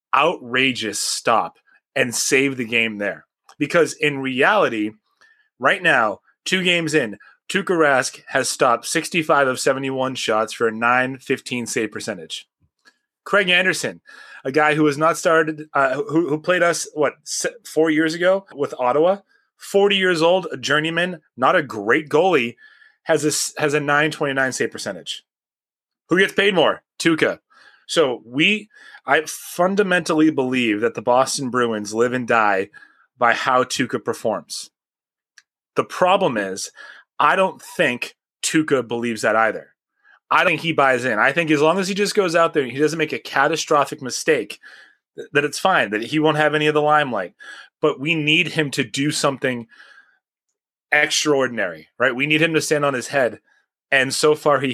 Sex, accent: male, American